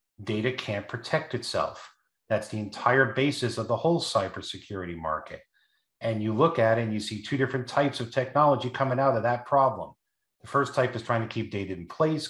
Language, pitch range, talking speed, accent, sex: English, 110-135 Hz, 200 wpm, American, male